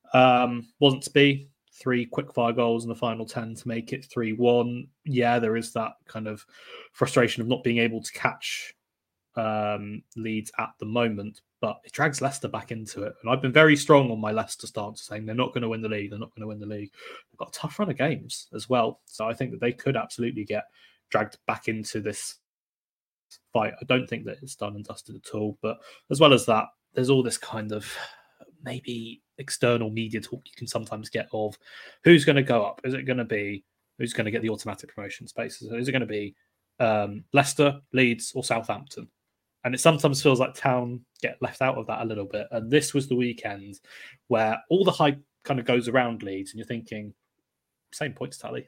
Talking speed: 220 wpm